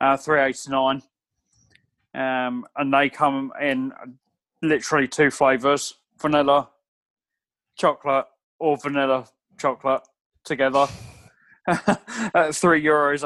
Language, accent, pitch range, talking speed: English, British, 140-180 Hz, 85 wpm